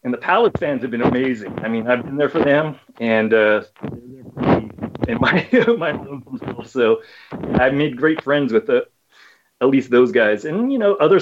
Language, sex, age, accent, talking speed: English, male, 30-49, American, 205 wpm